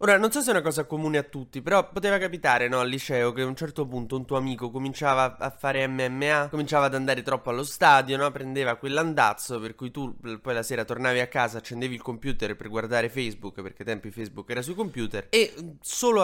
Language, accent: Italian, native